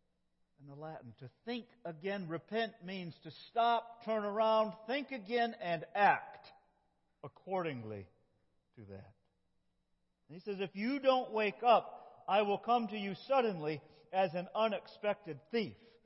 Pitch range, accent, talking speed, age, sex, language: 150-225 Hz, American, 135 wpm, 50-69, male, English